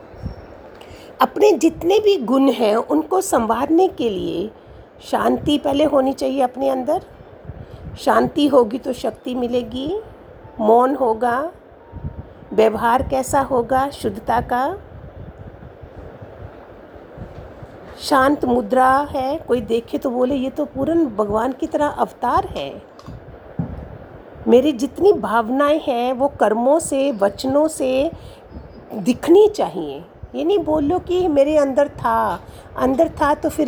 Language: Hindi